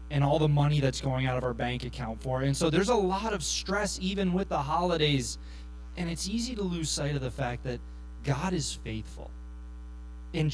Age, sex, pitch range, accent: 30-49, male, 135-185 Hz, American